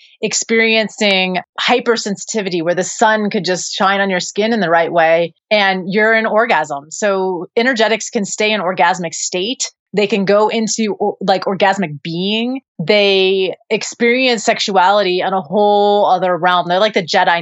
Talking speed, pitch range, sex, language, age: 160 wpm, 175-220 Hz, female, English, 30-49